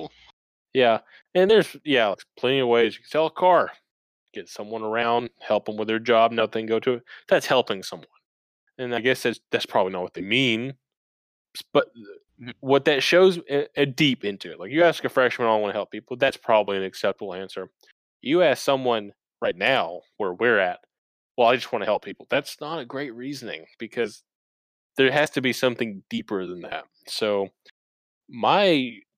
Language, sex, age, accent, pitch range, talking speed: English, male, 20-39, American, 100-130 Hz, 185 wpm